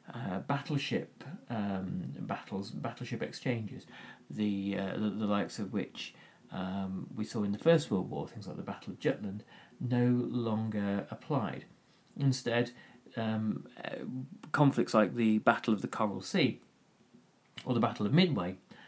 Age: 40-59